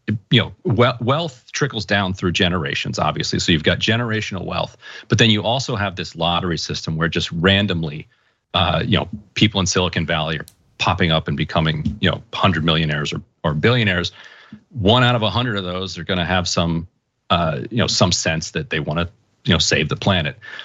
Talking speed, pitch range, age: 195 wpm, 85-110 Hz, 40-59